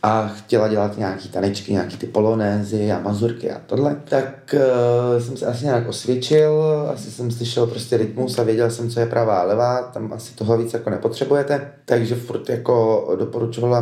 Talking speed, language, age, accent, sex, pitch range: 180 wpm, Czech, 30-49, native, male, 105-120 Hz